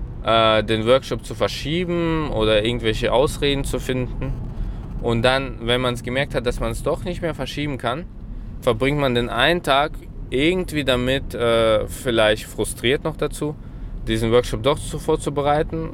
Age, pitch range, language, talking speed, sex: 20-39, 110-135 Hz, German, 150 wpm, male